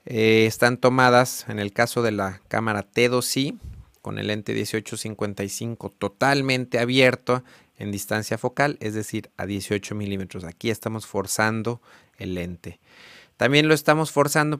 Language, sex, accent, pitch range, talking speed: Spanish, male, Mexican, 110-130 Hz, 135 wpm